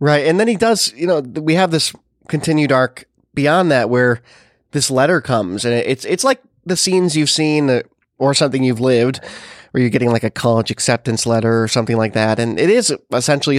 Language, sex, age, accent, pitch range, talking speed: English, male, 20-39, American, 115-155 Hz, 205 wpm